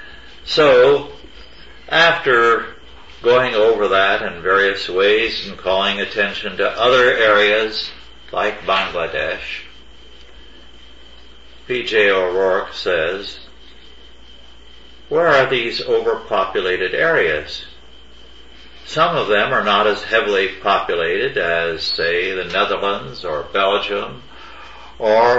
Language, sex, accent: English, male, American